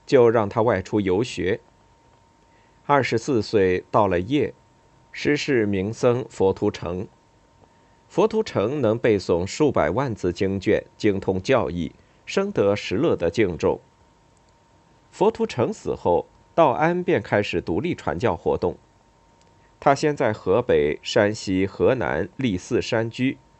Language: Chinese